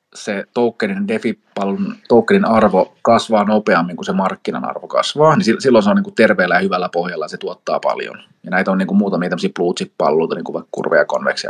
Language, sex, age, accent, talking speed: Finnish, male, 30-49, native, 210 wpm